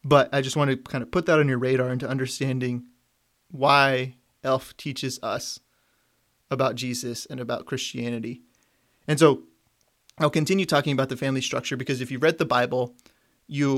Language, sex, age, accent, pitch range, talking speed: English, male, 30-49, American, 130-150 Hz, 170 wpm